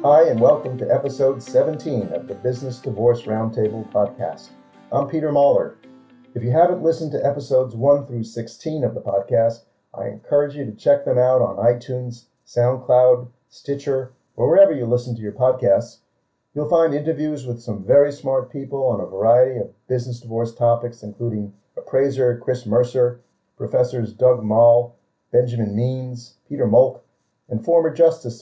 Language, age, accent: English, 50-69, American